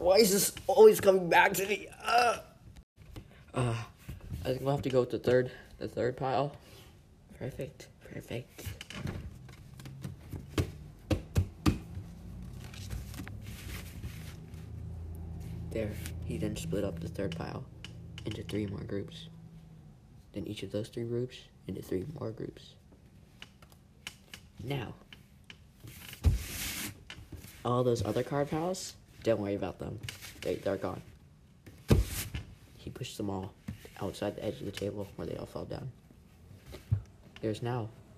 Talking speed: 115 wpm